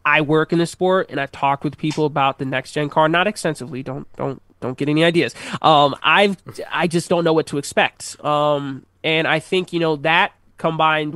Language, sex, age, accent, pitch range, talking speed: English, male, 20-39, American, 140-165 Hz, 215 wpm